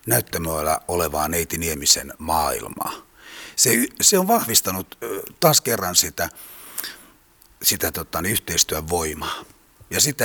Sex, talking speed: male, 105 wpm